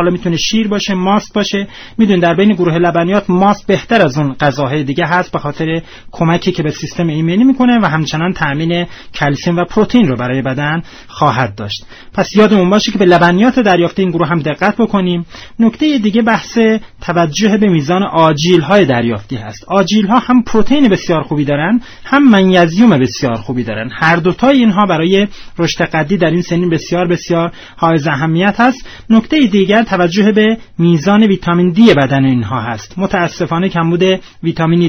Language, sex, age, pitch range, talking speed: Persian, male, 30-49, 165-210 Hz, 165 wpm